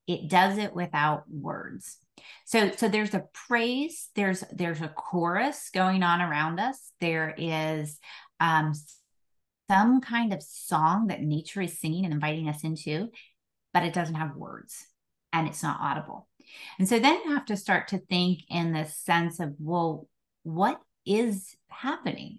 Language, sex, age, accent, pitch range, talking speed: English, female, 30-49, American, 155-195 Hz, 160 wpm